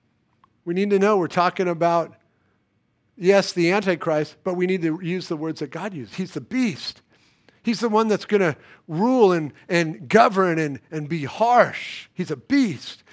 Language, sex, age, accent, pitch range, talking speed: English, male, 50-69, American, 155-210 Hz, 185 wpm